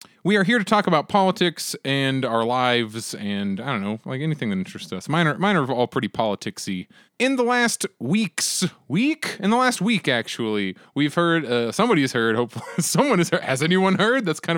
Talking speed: 200 wpm